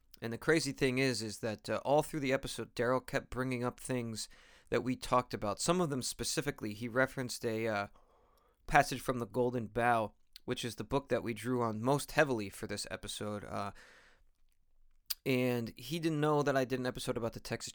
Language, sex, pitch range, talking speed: English, male, 105-130 Hz, 205 wpm